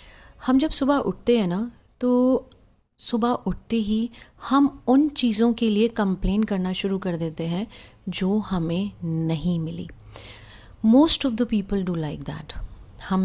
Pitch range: 160-200 Hz